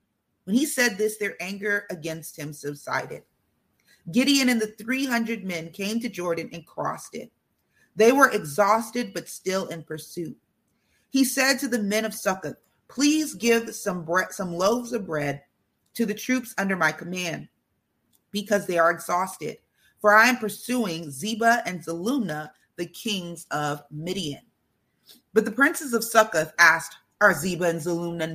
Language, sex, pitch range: English, female, 175-230 Hz